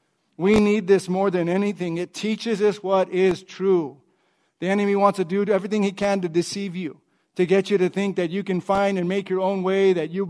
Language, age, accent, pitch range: English, 50-69, American, 195-250 Hz